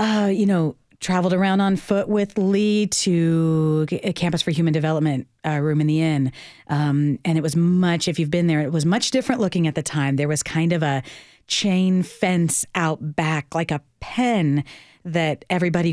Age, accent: 40-59, American